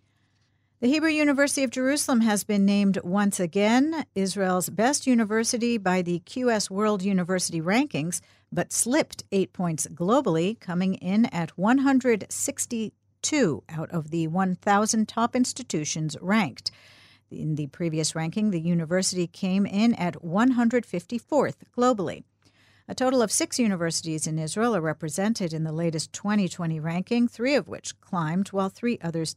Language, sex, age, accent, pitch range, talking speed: English, female, 50-69, American, 165-225 Hz, 135 wpm